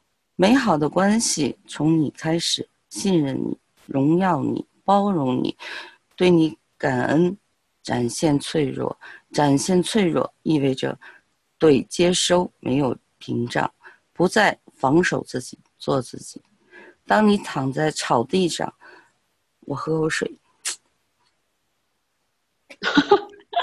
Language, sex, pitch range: Chinese, female, 140-190 Hz